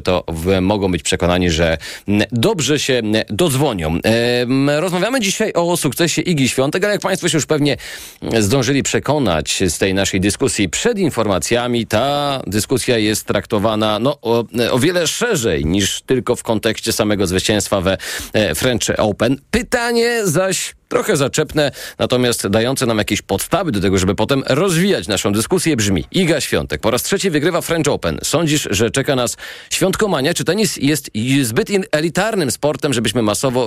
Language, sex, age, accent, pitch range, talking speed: Polish, male, 40-59, native, 100-150 Hz, 150 wpm